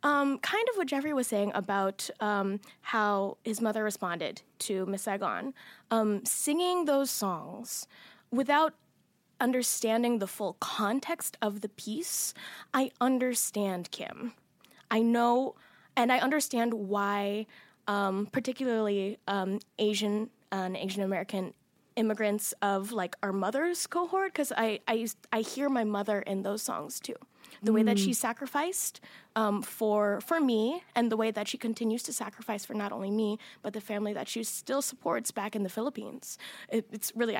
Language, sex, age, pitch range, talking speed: English, female, 10-29, 205-255 Hz, 150 wpm